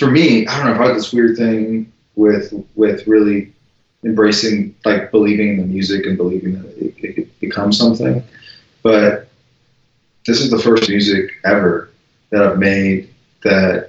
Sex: male